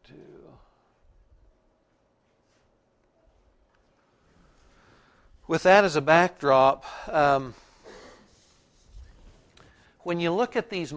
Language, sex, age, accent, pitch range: English, male, 60-79, American, 135-170 Hz